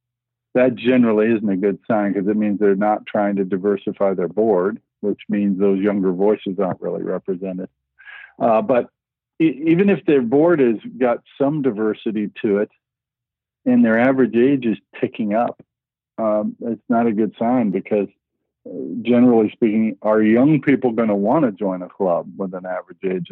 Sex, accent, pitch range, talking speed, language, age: male, American, 100-125 Hz, 165 wpm, English, 50-69